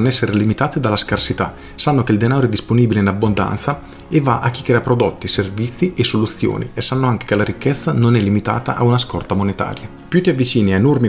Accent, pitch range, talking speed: native, 100-125 Hz, 210 wpm